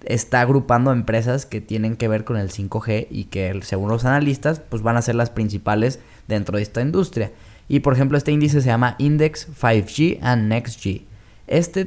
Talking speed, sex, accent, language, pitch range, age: 190 wpm, male, Mexican, Spanish, 110-140 Hz, 10-29